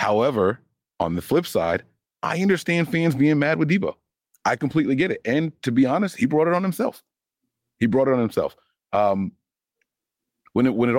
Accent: American